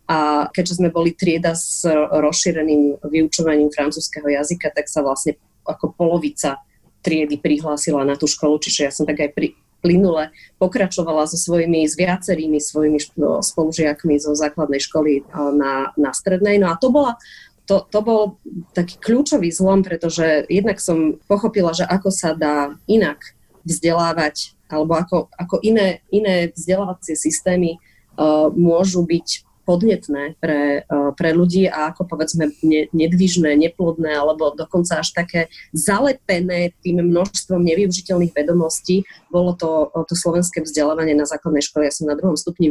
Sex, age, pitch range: female, 30-49, 150-180 Hz